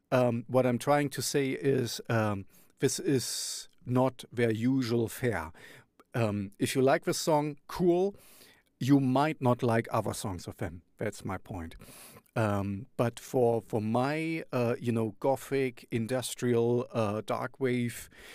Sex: male